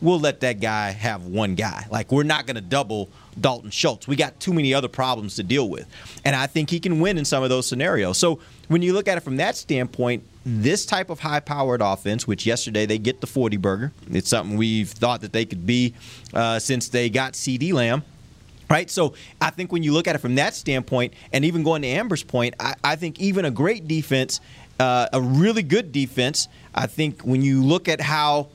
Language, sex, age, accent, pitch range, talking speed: English, male, 30-49, American, 125-170 Hz, 225 wpm